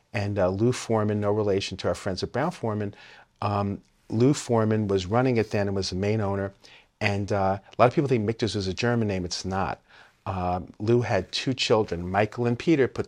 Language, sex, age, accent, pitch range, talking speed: English, male, 40-59, American, 95-115 Hz, 215 wpm